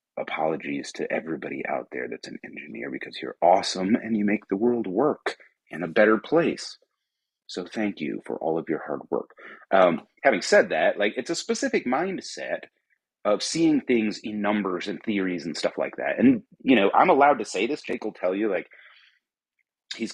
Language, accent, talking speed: English, American, 190 wpm